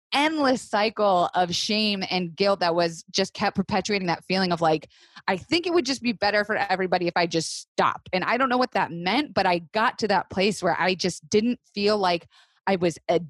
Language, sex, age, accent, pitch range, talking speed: English, female, 20-39, American, 165-210 Hz, 220 wpm